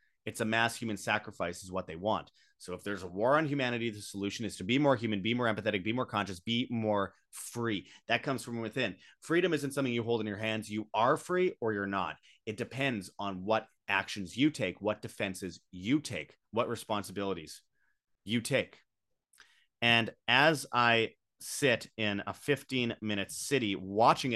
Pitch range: 100-130 Hz